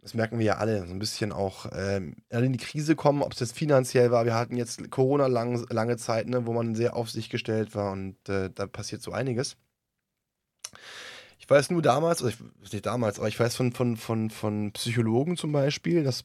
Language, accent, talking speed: German, German, 220 wpm